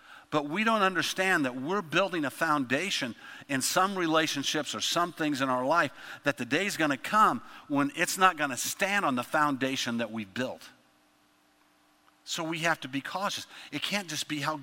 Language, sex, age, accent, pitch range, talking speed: English, male, 50-69, American, 115-170 Hz, 200 wpm